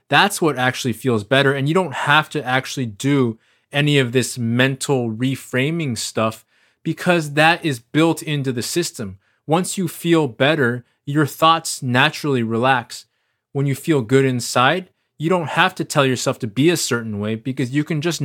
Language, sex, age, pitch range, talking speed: English, male, 20-39, 120-150 Hz, 175 wpm